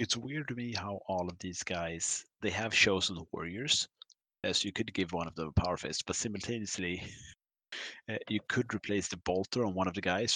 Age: 30-49